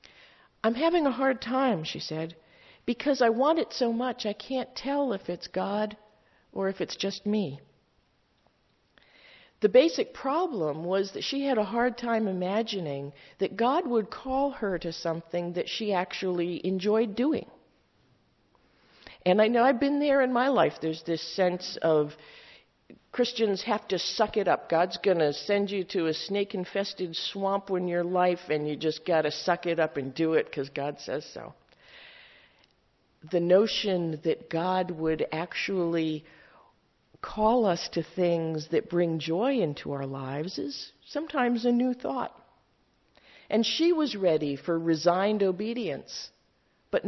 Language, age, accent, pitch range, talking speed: English, 50-69, American, 165-230 Hz, 155 wpm